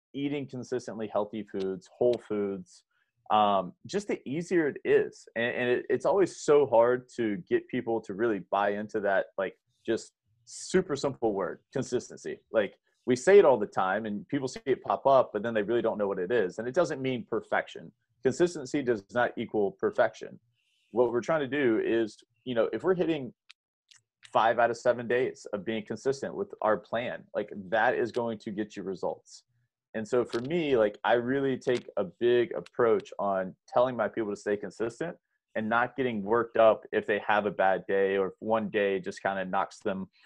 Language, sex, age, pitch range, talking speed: English, male, 30-49, 100-130 Hz, 195 wpm